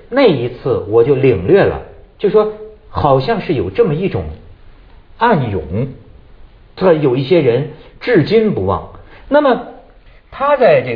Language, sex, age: Chinese, male, 50-69